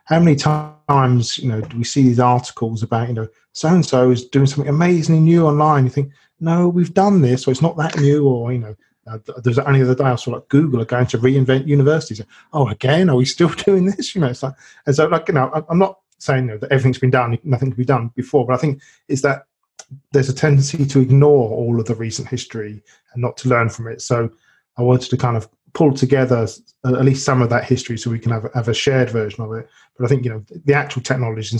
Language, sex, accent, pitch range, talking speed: English, male, British, 115-140 Hz, 255 wpm